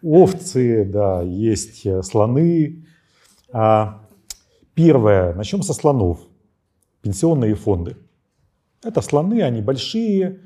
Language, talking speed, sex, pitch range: Ukrainian, 80 wpm, male, 105-180 Hz